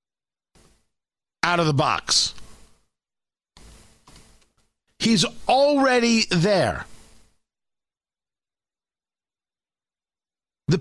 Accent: American